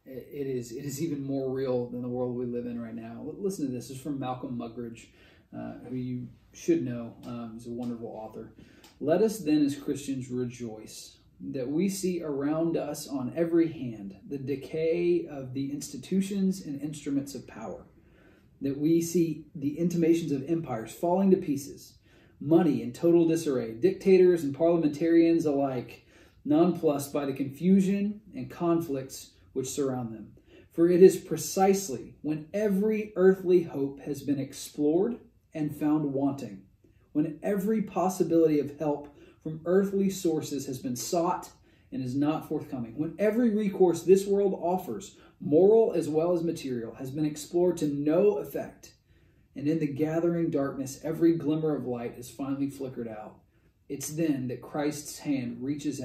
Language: English